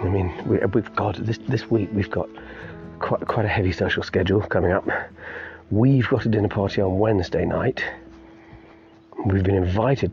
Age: 40-59